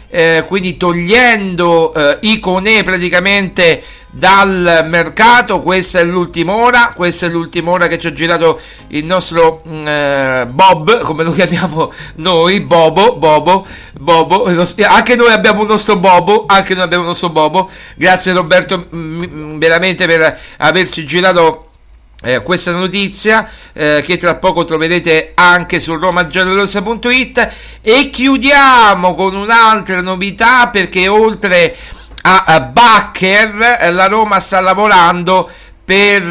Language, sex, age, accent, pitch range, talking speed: Italian, male, 50-69, native, 170-205 Hz, 125 wpm